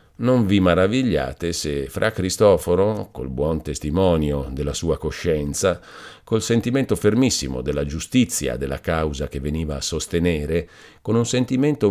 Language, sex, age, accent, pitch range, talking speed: Italian, male, 50-69, native, 80-110 Hz, 130 wpm